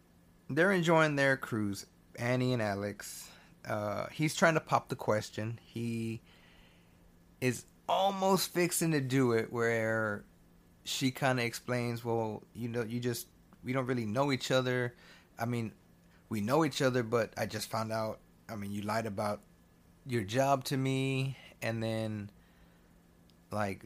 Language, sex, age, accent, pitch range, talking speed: English, male, 30-49, American, 105-135 Hz, 150 wpm